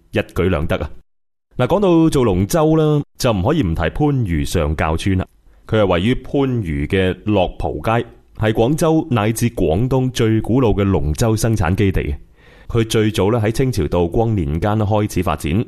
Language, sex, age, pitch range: Chinese, male, 30-49, 85-120 Hz